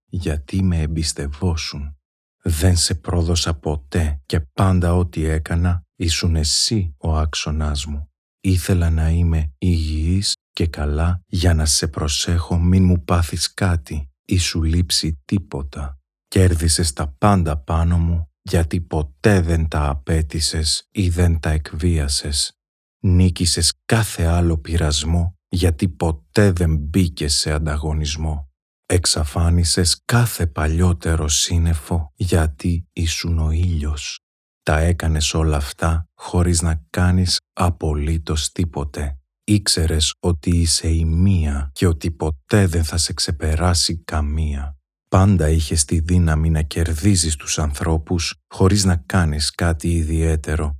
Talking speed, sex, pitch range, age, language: 120 wpm, male, 75-90 Hz, 40-59, Greek